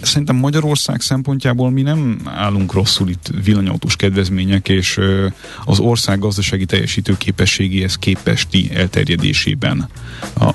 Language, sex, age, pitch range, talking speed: Hungarian, male, 30-49, 95-110 Hz, 110 wpm